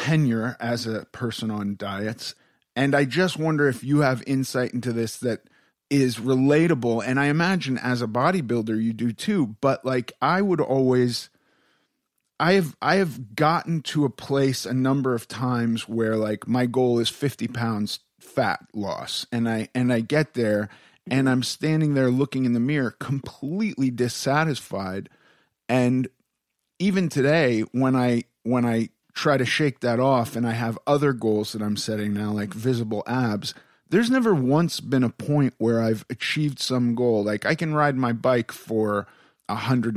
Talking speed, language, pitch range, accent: 170 wpm, English, 115-145 Hz, American